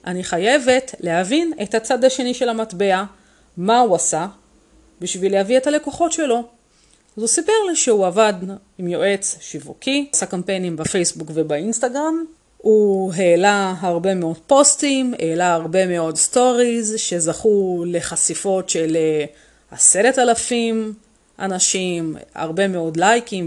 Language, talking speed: Hebrew, 125 wpm